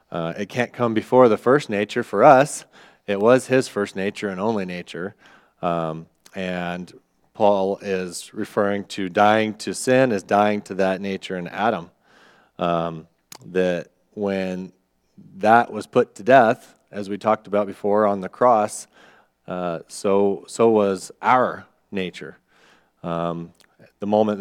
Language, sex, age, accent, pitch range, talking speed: English, male, 40-59, American, 90-105 Hz, 145 wpm